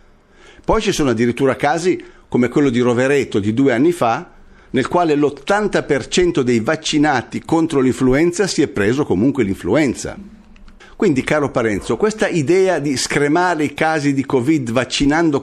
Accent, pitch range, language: native, 120-180 Hz, Italian